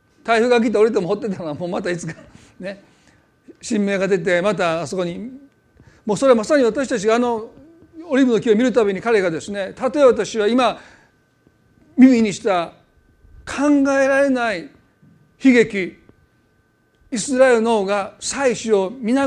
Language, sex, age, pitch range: Japanese, male, 40-59, 195-255 Hz